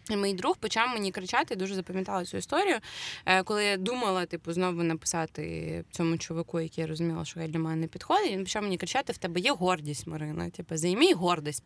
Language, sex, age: Ukrainian, female, 20-39